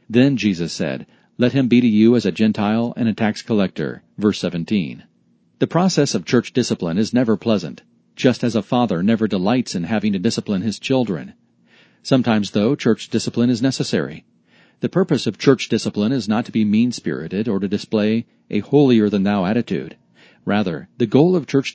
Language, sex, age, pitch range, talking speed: English, male, 40-59, 105-130 Hz, 175 wpm